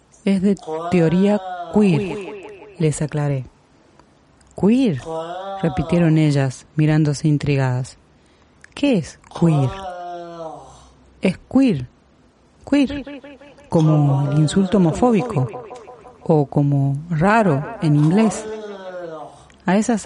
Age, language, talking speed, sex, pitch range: 40-59, Spanish, 85 wpm, female, 150-195 Hz